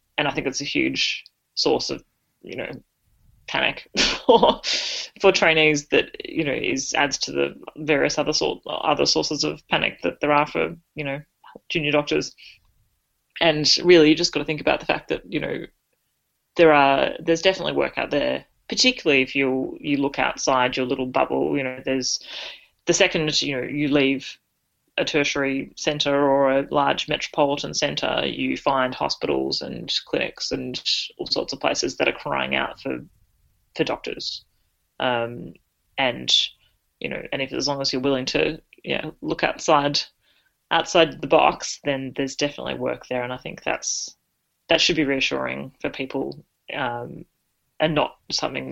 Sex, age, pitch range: female, 30-49, 130-155 Hz